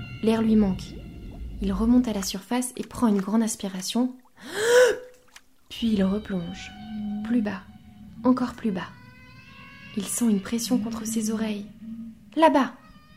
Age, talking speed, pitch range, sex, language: 20-39, 130 wpm, 200-250 Hz, female, French